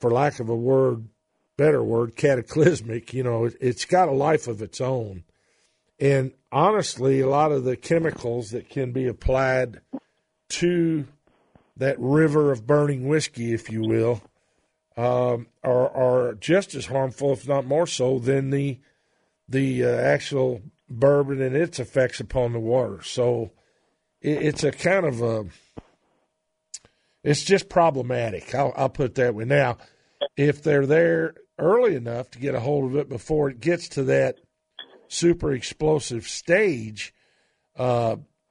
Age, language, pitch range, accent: 50-69, English, 120-150 Hz, American